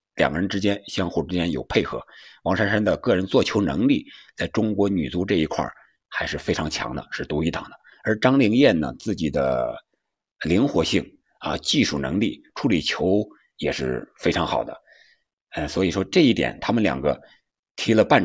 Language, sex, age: Chinese, male, 50-69